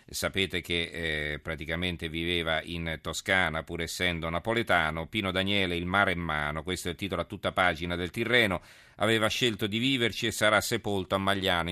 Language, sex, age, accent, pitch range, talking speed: Italian, male, 40-59, native, 90-105 Hz, 175 wpm